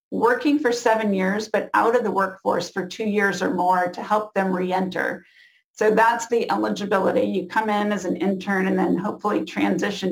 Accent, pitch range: American, 190-230 Hz